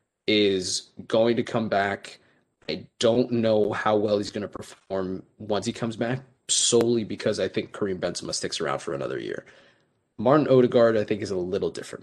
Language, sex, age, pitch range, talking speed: English, male, 20-39, 100-120 Hz, 185 wpm